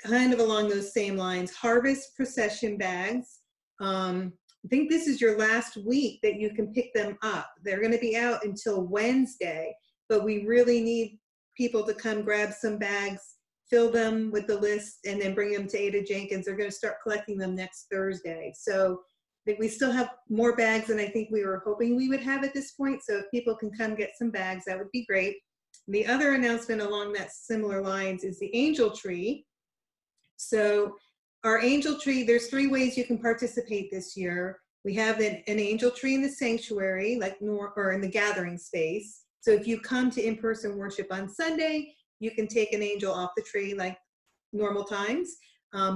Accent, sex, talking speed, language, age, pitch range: American, female, 195 wpm, English, 40-59, 200-235 Hz